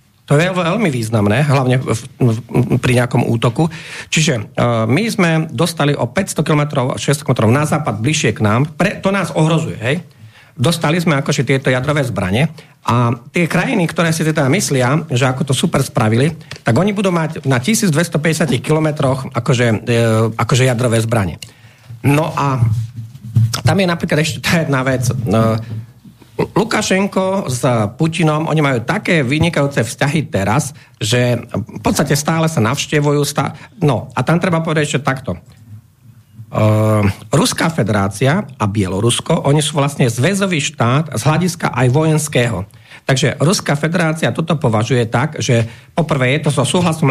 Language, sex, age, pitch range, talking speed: Slovak, male, 40-59, 120-155 Hz, 155 wpm